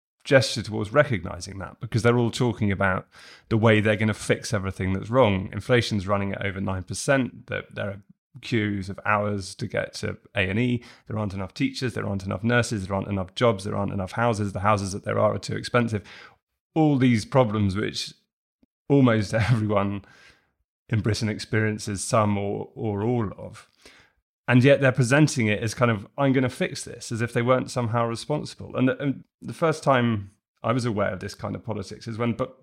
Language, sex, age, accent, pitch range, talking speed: English, male, 30-49, British, 105-125 Hz, 200 wpm